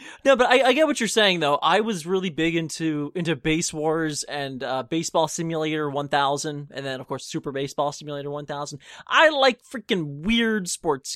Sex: male